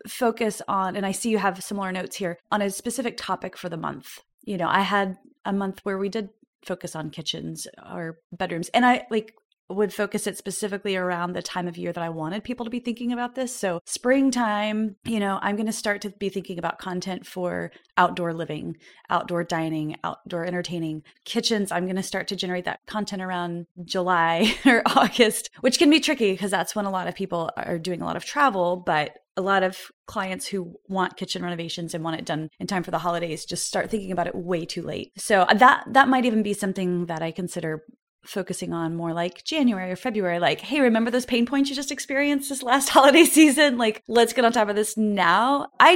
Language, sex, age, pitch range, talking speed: English, female, 30-49, 175-235 Hz, 220 wpm